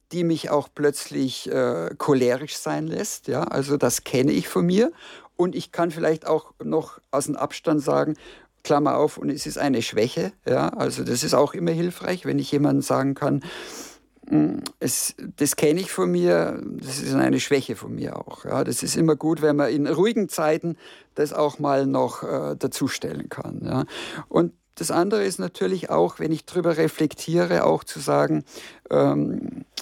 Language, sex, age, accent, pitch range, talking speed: German, male, 50-69, German, 140-165 Hz, 180 wpm